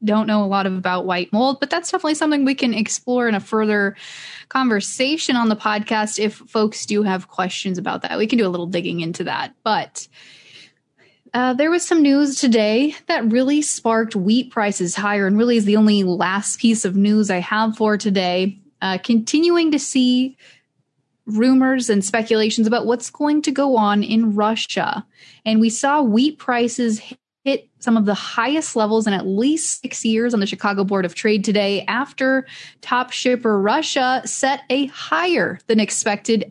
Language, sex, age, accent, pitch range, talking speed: English, female, 20-39, American, 205-255 Hz, 180 wpm